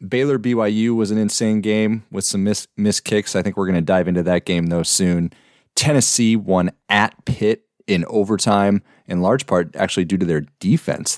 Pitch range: 90-115 Hz